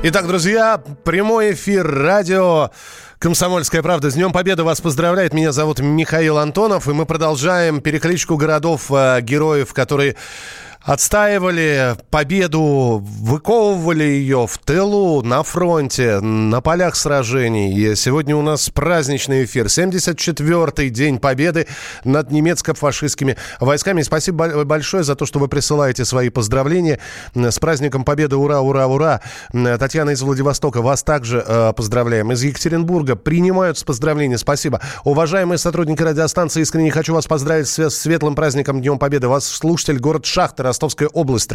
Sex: male